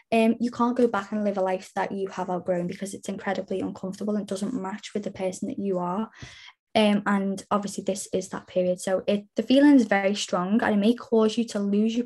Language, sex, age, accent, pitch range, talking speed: English, female, 10-29, British, 195-235 Hz, 240 wpm